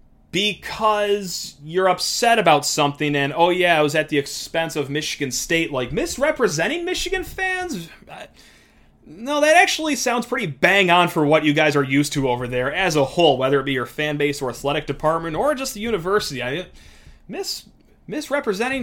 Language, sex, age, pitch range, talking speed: English, male, 30-49, 140-185 Hz, 180 wpm